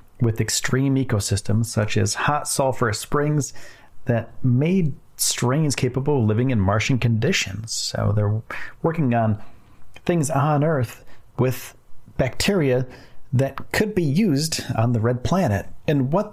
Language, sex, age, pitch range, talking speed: English, male, 40-59, 110-140 Hz, 130 wpm